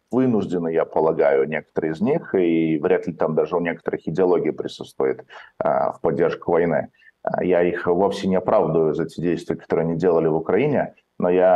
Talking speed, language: 175 wpm, Russian